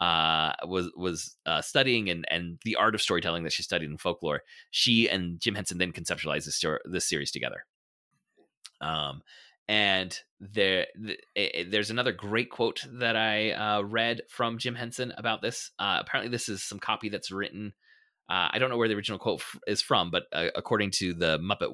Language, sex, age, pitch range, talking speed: English, male, 30-49, 85-105 Hz, 195 wpm